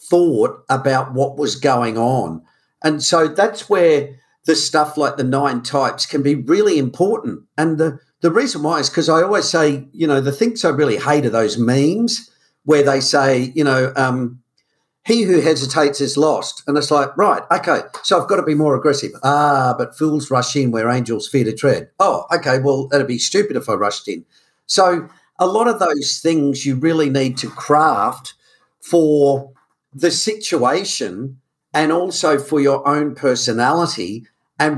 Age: 50-69